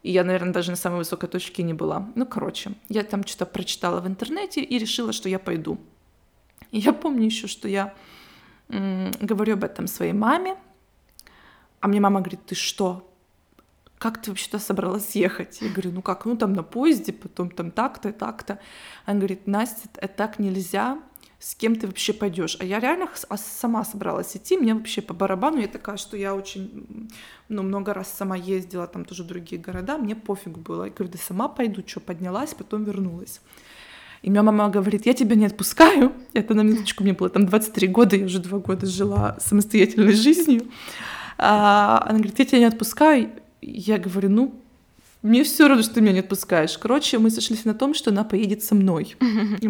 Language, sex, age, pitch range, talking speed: Russian, female, 20-39, 190-230 Hz, 195 wpm